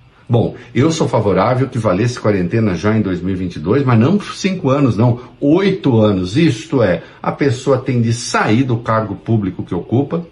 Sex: male